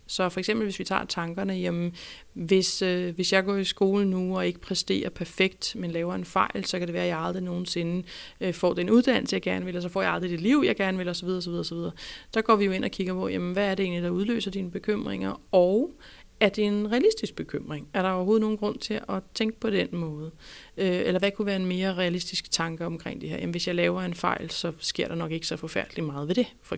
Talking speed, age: 250 wpm, 30-49